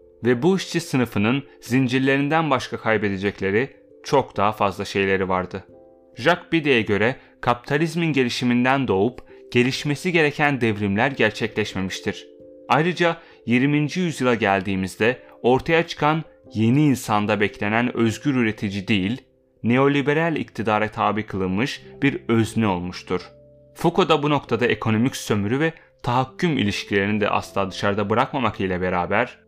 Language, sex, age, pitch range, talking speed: Turkish, male, 30-49, 100-140 Hz, 115 wpm